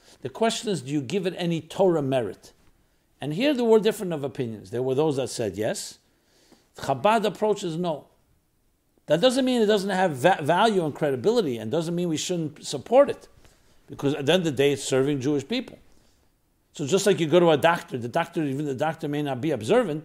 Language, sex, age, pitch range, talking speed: English, male, 60-79, 155-220 Hz, 210 wpm